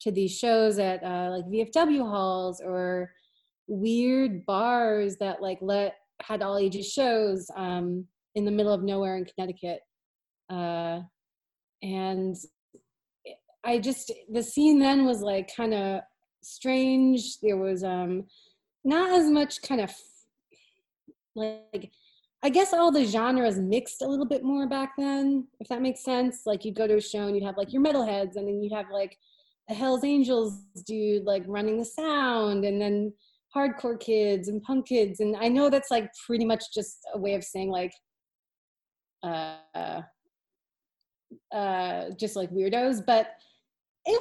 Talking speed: 155 wpm